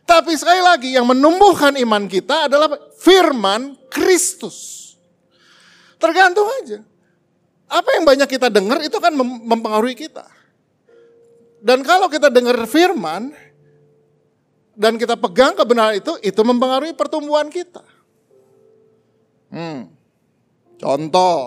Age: 50-69